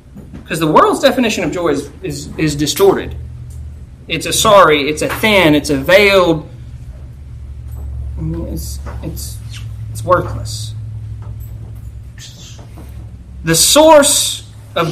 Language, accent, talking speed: English, American, 105 wpm